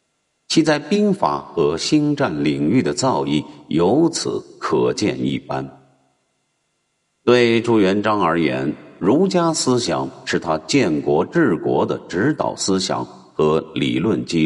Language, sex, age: Chinese, male, 50-69